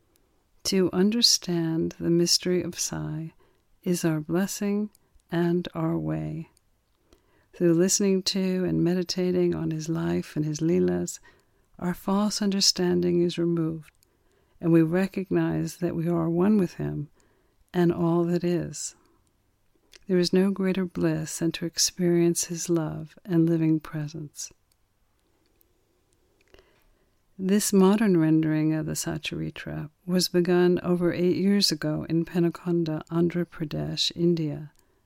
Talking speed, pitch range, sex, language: 120 wpm, 160-180 Hz, female, English